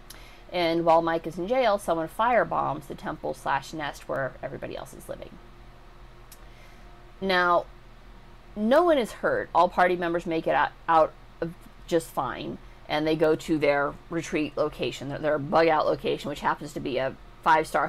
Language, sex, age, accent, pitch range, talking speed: English, female, 30-49, American, 160-205 Hz, 155 wpm